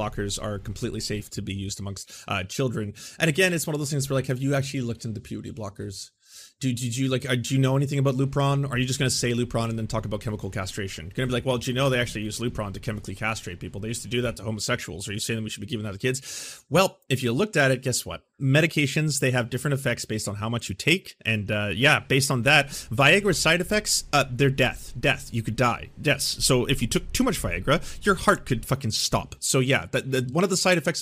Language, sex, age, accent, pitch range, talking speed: English, male, 30-49, American, 115-140 Hz, 265 wpm